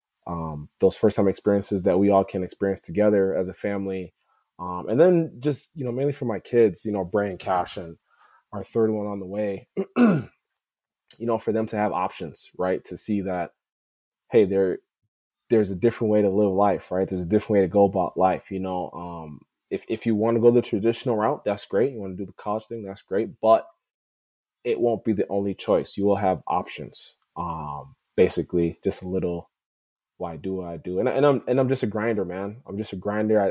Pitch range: 90-110 Hz